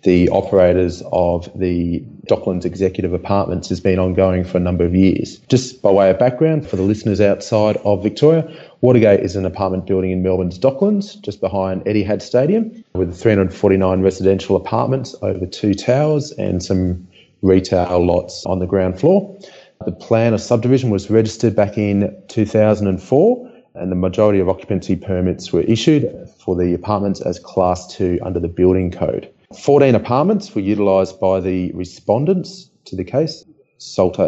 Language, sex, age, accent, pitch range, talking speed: English, male, 30-49, Australian, 95-115 Hz, 160 wpm